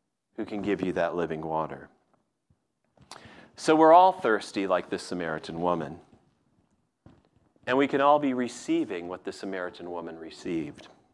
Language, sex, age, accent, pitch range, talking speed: English, male, 40-59, American, 110-150 Hz, 140 wpm